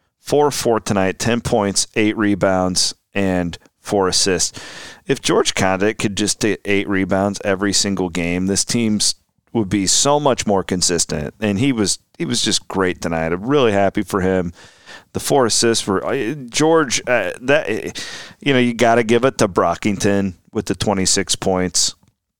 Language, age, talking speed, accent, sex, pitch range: English, 40-59, 165 wpm, American, male, 95-115 Hz